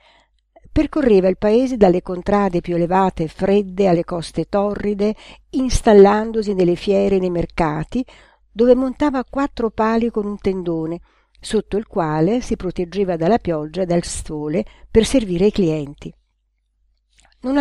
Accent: native